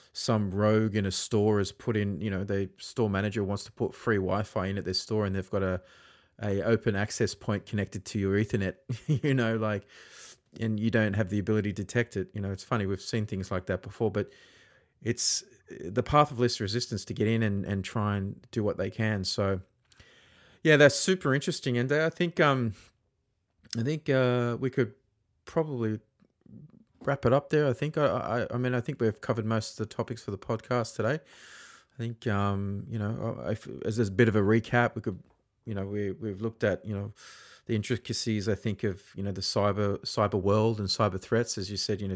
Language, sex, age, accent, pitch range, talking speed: English, male, 30-49, Australian, 100-120 Hz, 215 wpm